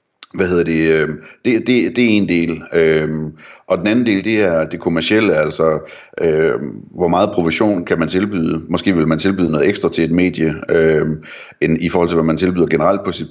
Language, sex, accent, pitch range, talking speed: Danish, male, native, 80-100 Hz, 200 wpm